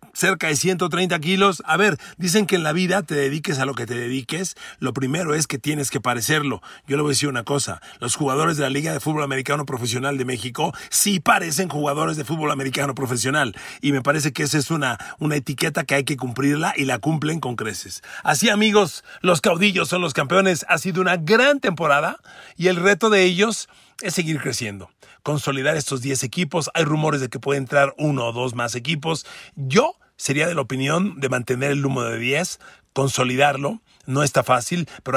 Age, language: 40-59, Spanish